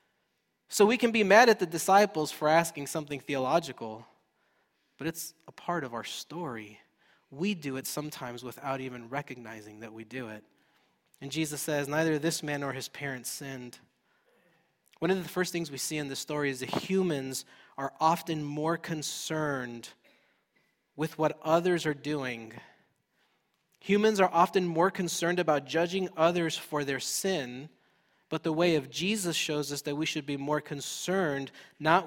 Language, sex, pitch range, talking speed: English, male, 135-180 Hz, 165 wpm